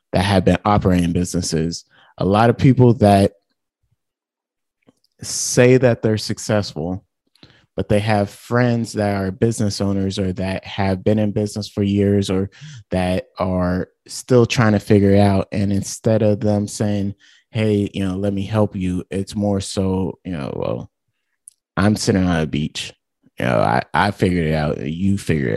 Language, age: English, 30-49